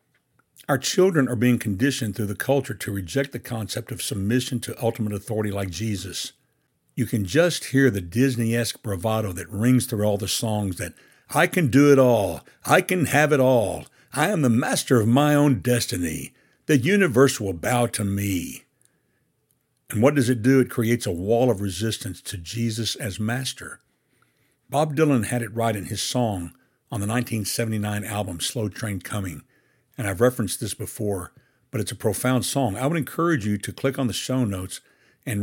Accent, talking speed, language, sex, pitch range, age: American, 185 wpm, English, male, 100-125 Hz, 60-79